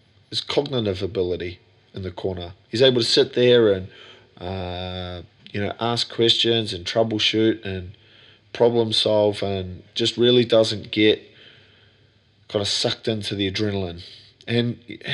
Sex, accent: male, Australian